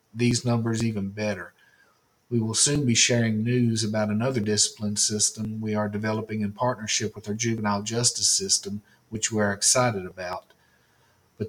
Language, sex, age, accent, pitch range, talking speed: English, male, 50-69, American, 105-120 Hz, 155 wpm